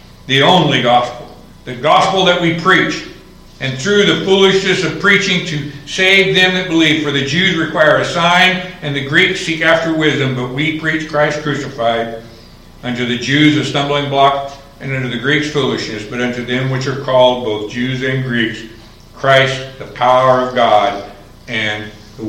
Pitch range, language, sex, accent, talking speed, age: 120-155 Hz, English, male, American, 170 wpm, 60-79